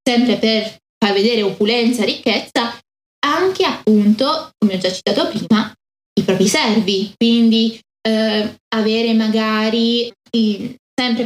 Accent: native